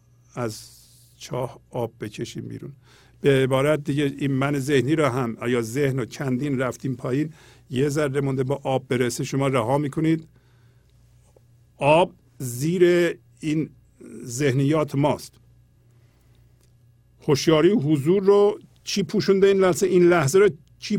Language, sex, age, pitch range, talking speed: Persian, male, 50-69, 120-160 Hz, 125 wpm